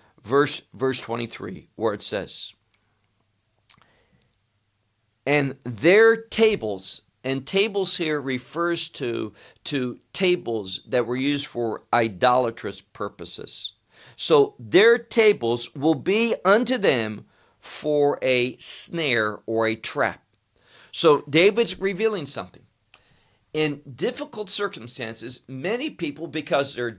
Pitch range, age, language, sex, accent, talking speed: 115-170 Hz, 50-69, English, male, American, 100 wpm